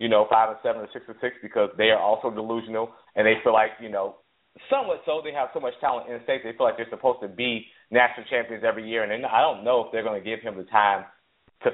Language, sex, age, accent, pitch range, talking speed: English, male, 30-49, American, 110-135 Hz, 275 wpm